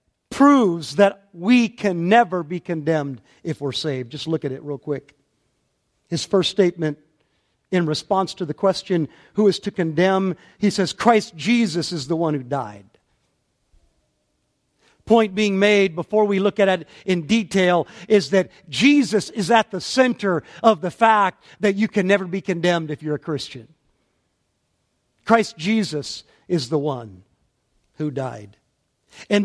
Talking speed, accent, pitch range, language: 155 wpm, American, 170-225 Hz, English